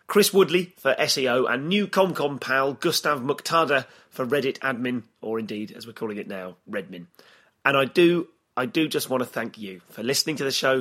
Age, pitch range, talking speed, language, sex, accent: 30-49, 115-160 Hz, 200 wpm, English, male, British